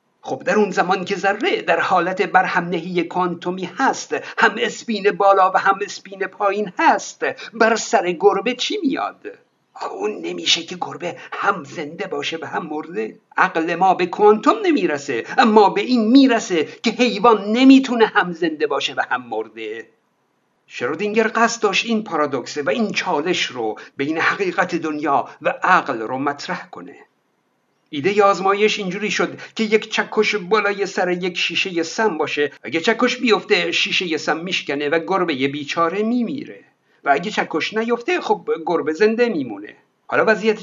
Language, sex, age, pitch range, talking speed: Persian, male, 50-69, 170-230 Hz, 150 wpm